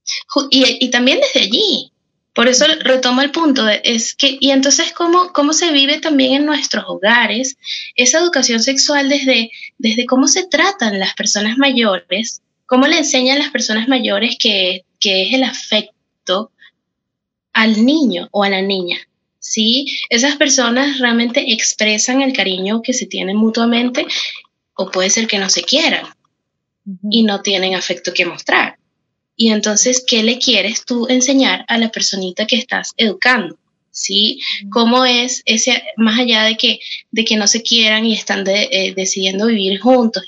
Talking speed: 160 wpm